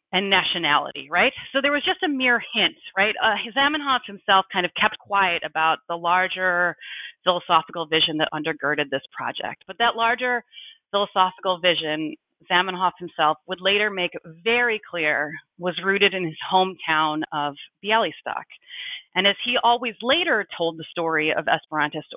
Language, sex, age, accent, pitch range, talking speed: English, female, 30-49, American, 165-220 Hz, 150 wpm